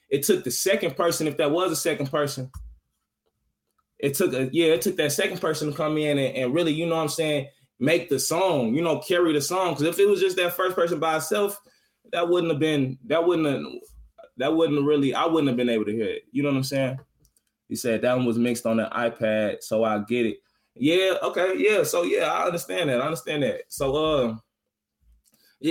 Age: 20-39